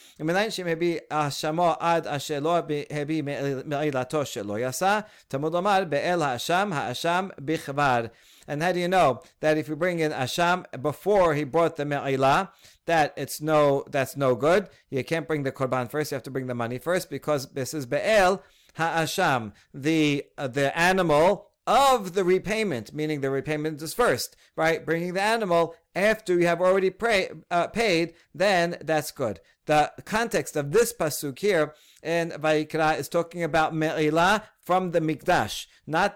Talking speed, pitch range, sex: 135 wpm, 145-175 Hz, male